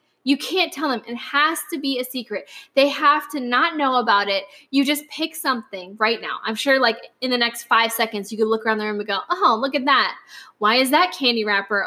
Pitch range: 230-320 Hz